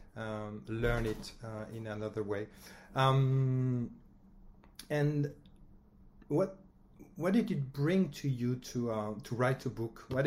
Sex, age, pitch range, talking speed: male, 40-59, 115-135 Hz, 135 wpm